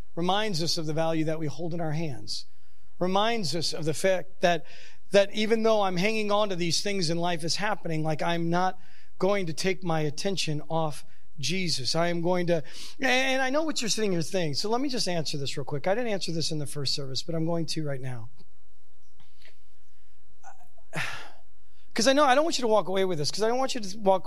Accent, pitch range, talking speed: American, 170-255 Hz, 230 wpm